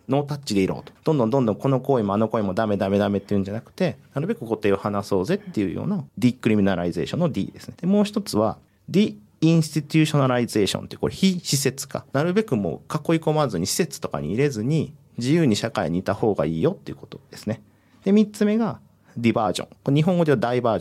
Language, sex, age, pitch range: Japanese, male, 40-59, 105-170 Hz